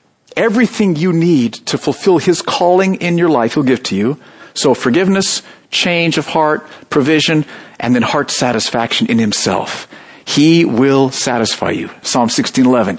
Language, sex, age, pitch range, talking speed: English, male, 50-69, 150-215 Hz, 150 wpm